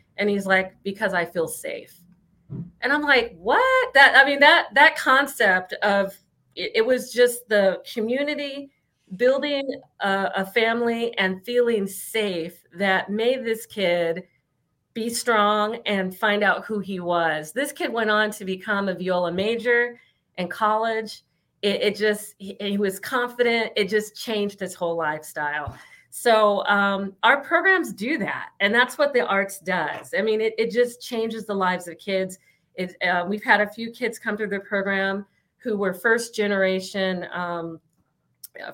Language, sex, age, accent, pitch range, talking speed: English, female, 40-59, American, 175-230 Hz, 165 wpm